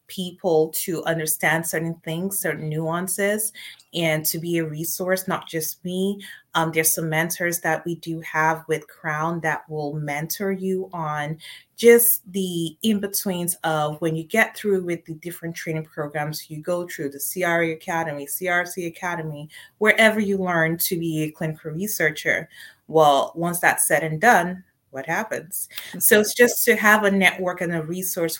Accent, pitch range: American, 155-185 Hz